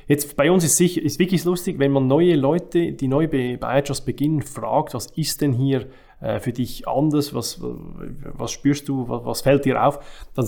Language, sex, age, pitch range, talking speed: German, male, 20-39, 120-145 Hz, 190 wpm